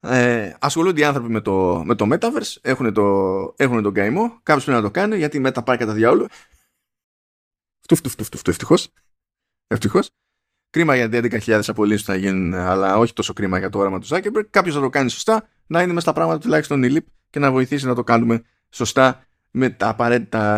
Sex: male